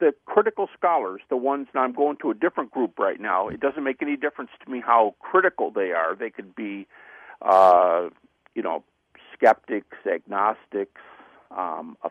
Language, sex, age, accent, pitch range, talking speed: English, male, 50-69, American, 115-160 Hz, 165 wpm